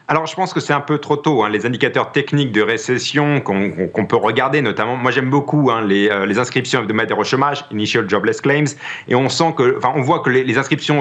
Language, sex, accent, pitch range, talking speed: French, male, French, 120-160 Hz, 245 wpm